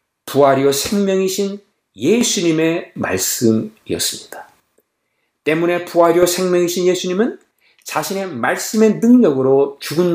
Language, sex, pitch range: Korean, male, 125-190 Hz